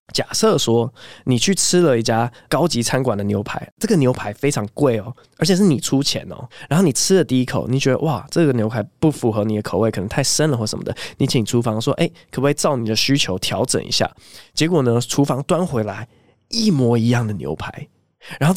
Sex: male